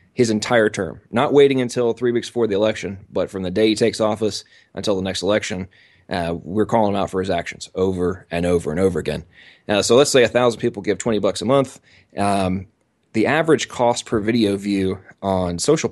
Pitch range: 95-115 Hz